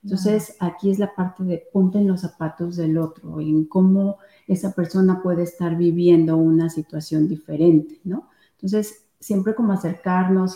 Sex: female